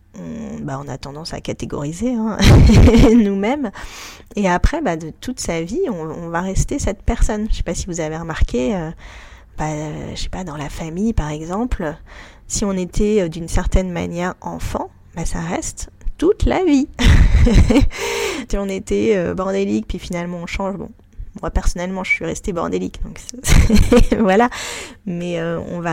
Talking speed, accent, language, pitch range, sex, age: 170 wpm, French, French, 160-220 Hz, female, 20-39